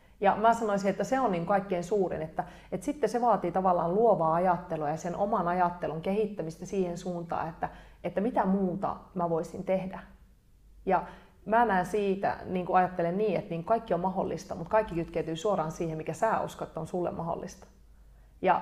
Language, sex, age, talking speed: Finnish, female, 30-49, 175 wpm